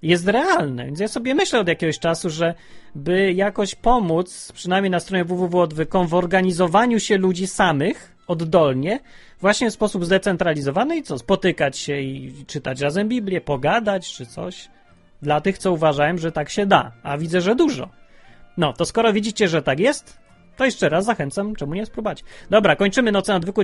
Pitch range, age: 165-215 Hz, 30-49